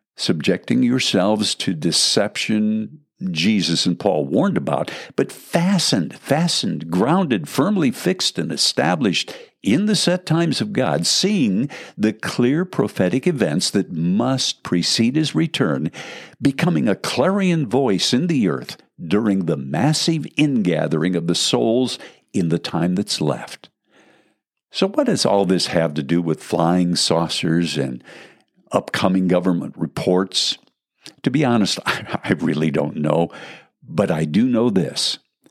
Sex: male